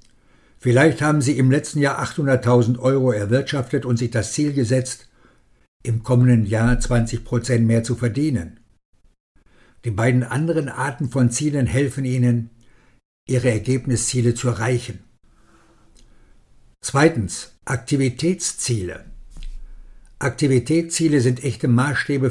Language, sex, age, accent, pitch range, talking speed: German, male, 60-79, German, 115-135 Hz, 105 wpm